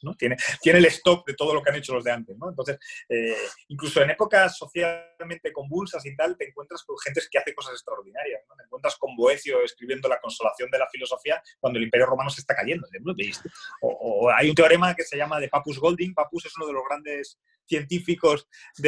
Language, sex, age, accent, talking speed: Spanish, male, 30-49, Spanish, 225 wpm